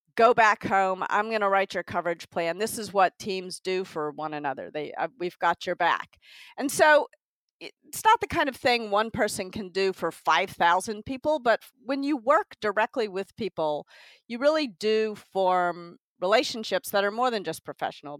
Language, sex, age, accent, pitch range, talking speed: English, female, 50-69, American, 175-245 Hz, 185 wpm